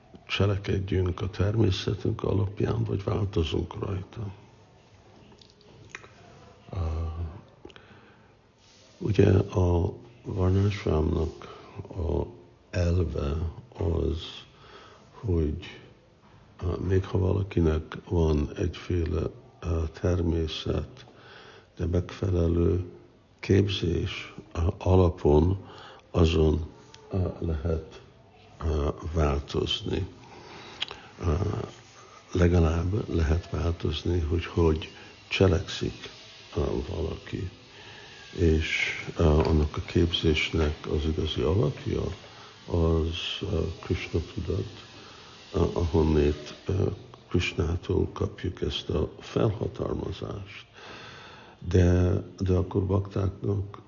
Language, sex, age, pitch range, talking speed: Hungarian, male, 60-79, 85-100 Hz, 65 wpm